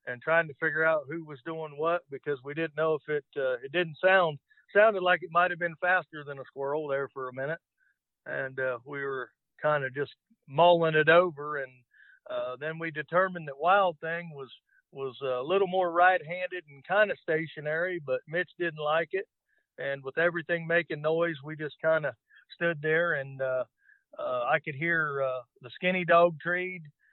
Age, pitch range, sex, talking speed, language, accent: 50-69, 145-180 Hz, male, 190 wpm, English, American